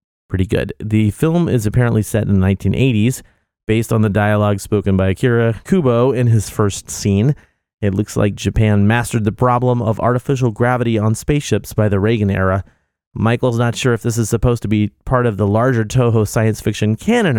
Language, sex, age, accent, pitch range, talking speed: English, male, 30-49, American, 100-125 Hz, 190 wpm